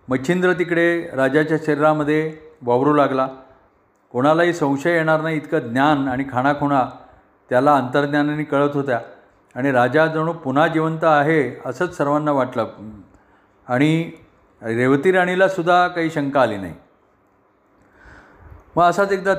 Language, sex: Marathi, male